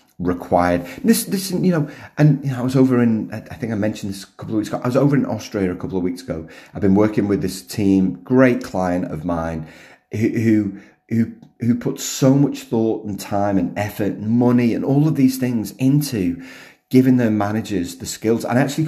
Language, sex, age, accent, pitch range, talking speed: English, male, 30-49, British, 90-125 Hz, 225 wpm